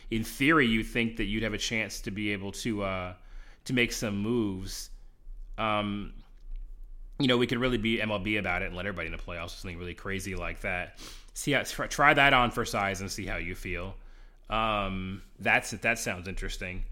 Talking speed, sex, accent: 205 wpm, male, American